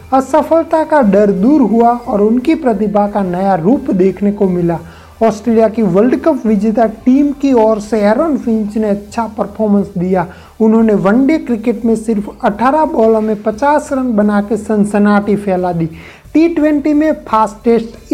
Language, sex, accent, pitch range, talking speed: Hindi, male, native, 200-255 Hz, 155 wpm